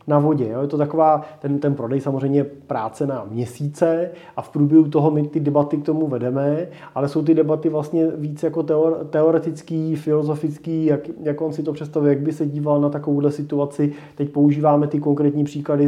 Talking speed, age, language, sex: 195 wpm, 30-49, Czech, male